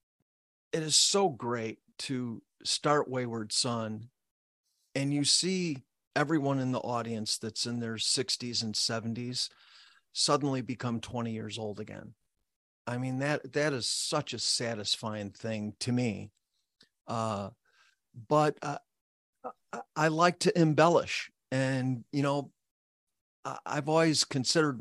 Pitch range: 115-140 Hz